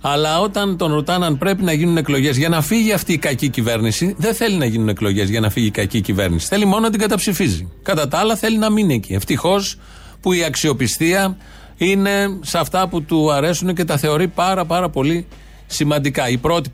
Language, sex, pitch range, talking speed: Greek, male, 120-170 Hz, 205 wpm